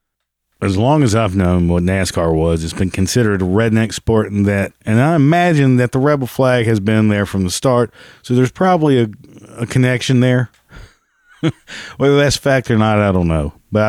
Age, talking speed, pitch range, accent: 40-59, 195 wpm, 100-130 Hz, American